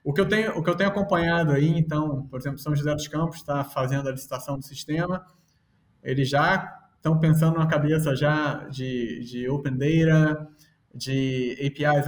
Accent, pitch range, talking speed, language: Brazilian, 145-170 Hz, 180 wpm, Portuguese